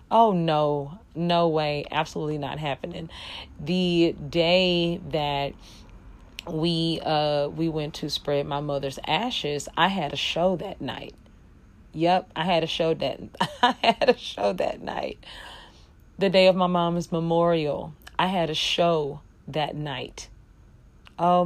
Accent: American